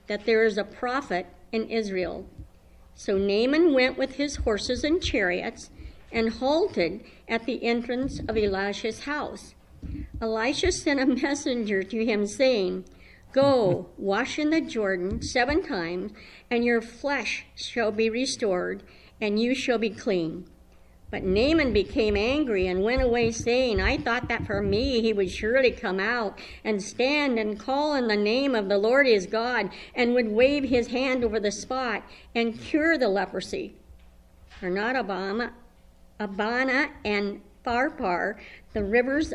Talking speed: 150 wpm